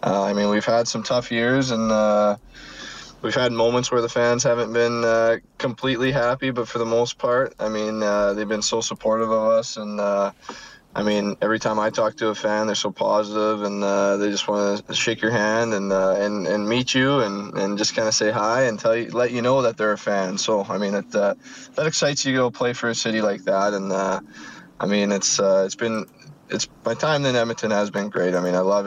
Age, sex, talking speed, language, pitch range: 20-39, male, 245 wpm, English, 100-120 Hz